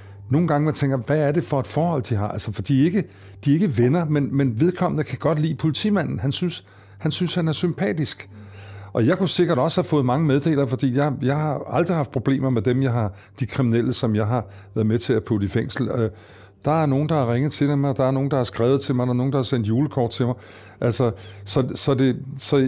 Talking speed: 255 wpm